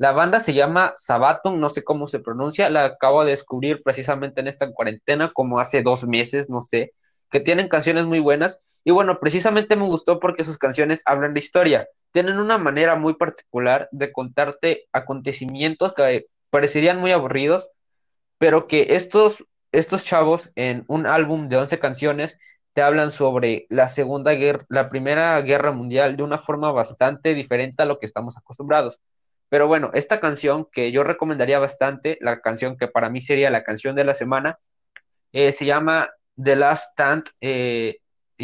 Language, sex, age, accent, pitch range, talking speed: Spanish, male, 20-39, Mexican, 130-160 Hz, 170 wpm